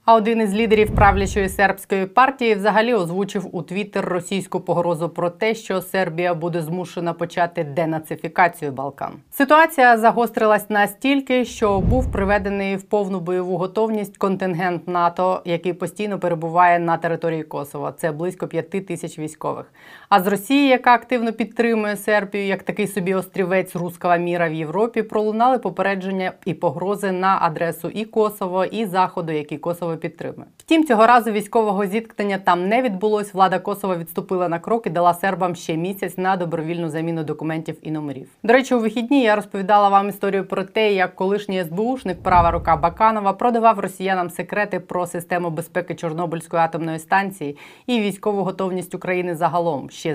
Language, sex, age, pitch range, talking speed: Ukrainian, female, 20-39, 175-210 Hz, 155 wpm